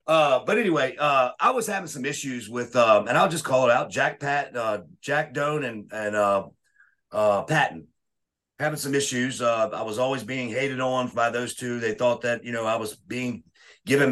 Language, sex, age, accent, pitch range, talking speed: English, male, 40-59, American, 110-140 Hz, 210 wpm